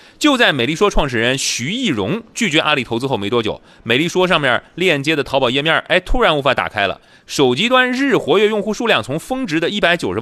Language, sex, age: Chinese, male, 30-49